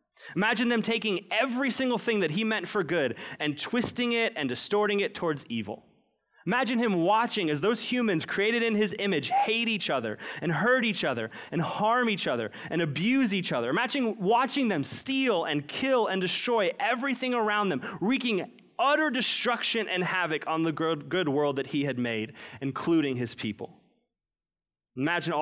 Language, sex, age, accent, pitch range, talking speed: English, male, 30-49, American, 135-210 Hz, 170 wpm